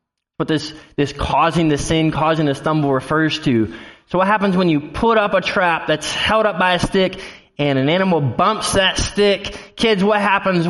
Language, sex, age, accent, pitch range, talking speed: English, male, 20-39, American, 145-200 Hz, 195 wpm